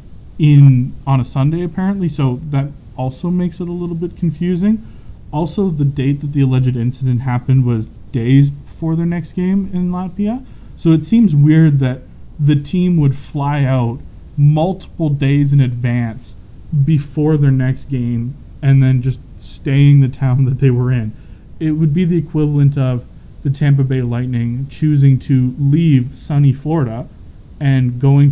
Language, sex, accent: English, male, American